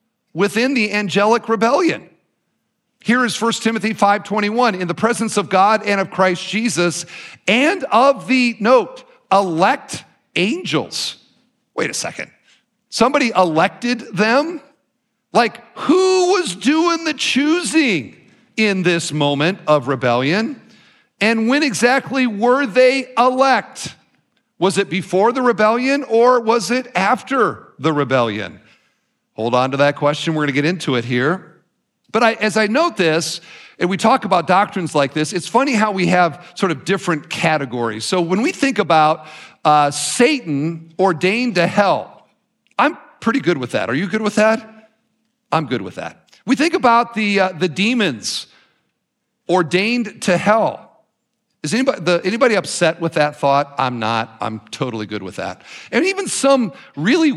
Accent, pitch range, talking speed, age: American, 170-245 Hz, 150 wpm, 50-69